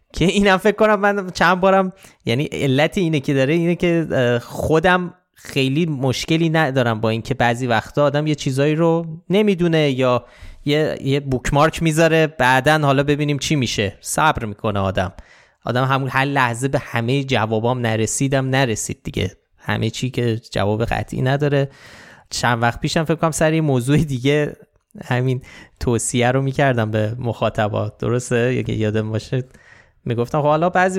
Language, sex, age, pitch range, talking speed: Persian, male, 20-39, 120-160 Hz, 150 wpm